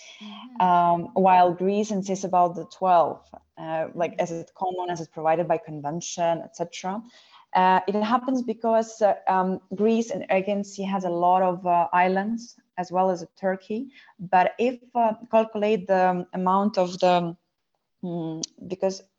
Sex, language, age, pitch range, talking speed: female, Ukrainian, 20-39, 170-195 Hz, 150 wpm